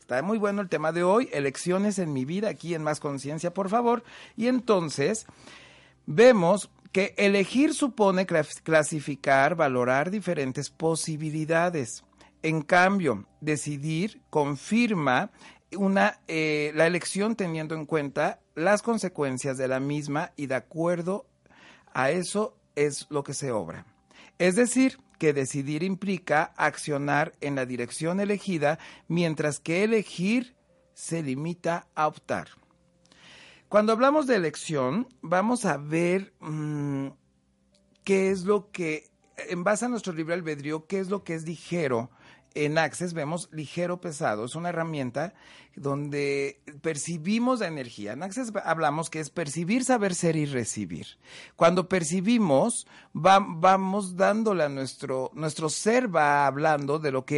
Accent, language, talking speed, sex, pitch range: Mexican, Spanish, 135 wpm, male, 145-195 Hz